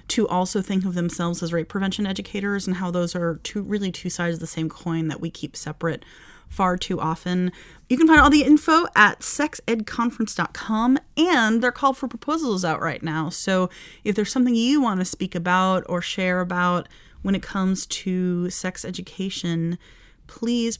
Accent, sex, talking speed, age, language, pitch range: American, female, 180 wpm, 30-49, English, 170-220 Hz